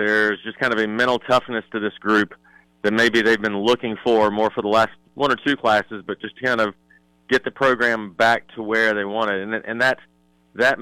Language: English